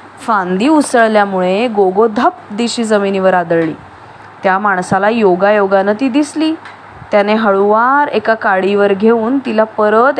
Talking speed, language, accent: 120 wpm, English, Indian